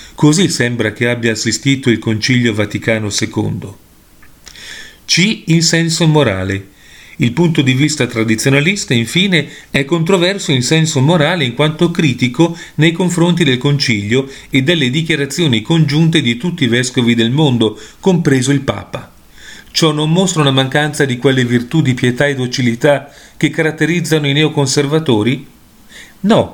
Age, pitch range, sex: 40-59, 120-160 Hz, male